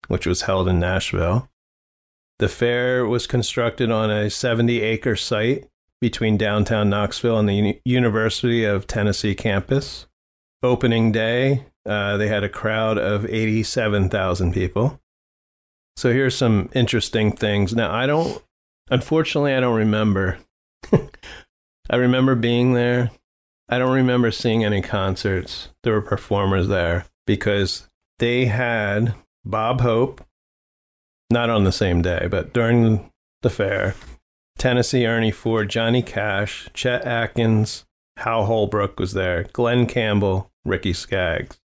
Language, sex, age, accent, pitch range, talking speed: English, male, 30-49, American, 95-120 Hz, 130 wpm